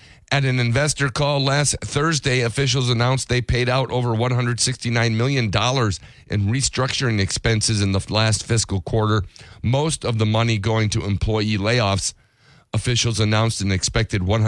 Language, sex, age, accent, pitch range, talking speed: English, male, 40-59, American, 100-130 Hz, 140 wpm